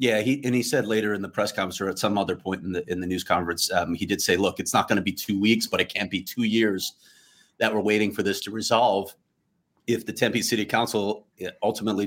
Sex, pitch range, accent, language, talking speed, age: male, 95-110 Hz, American, English, 260 wpm, 30-49